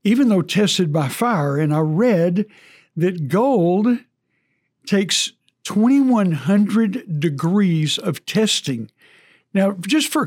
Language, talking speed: English, 105 wpm